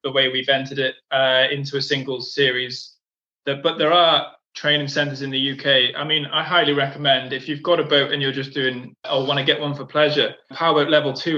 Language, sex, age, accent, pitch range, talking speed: English, male, 20-39, British, 130-150 Hz, 225 wpm